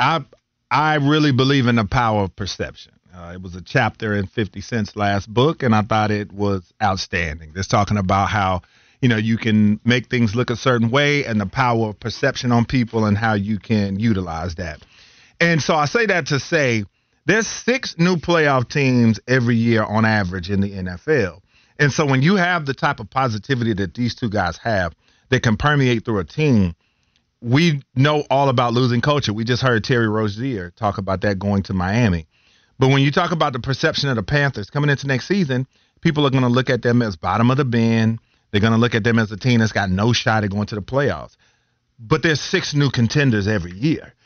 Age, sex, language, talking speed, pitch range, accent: 40-59, male, English, 215 wpm, 105-145 Hz, American